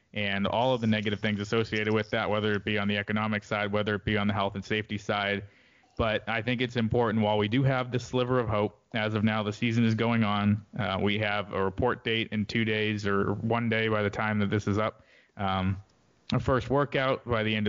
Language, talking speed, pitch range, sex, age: English, 245 wpm, 100-115 Hz, male, 20-39